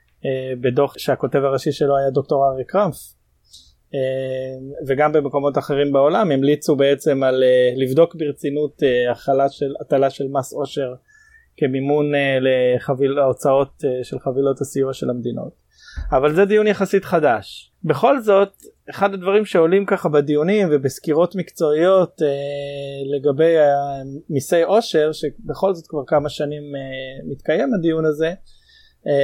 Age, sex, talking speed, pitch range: 20-39, male, 115 wpm, 135-165 Hz